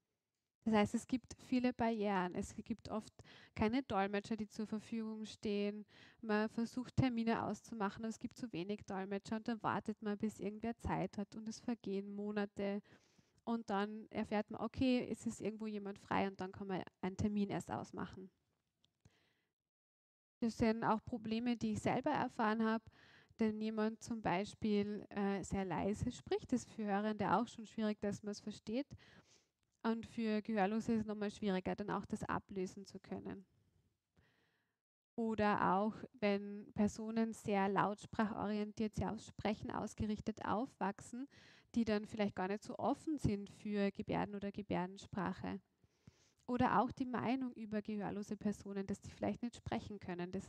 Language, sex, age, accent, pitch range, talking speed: German, female, 20-39, German, 200-225 Hz, 160 wpm